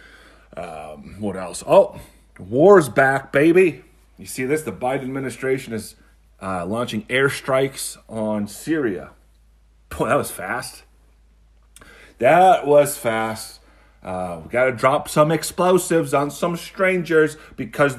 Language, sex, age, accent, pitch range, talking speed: English, male, 30-49, American, 100-155 Hz, 125 wpm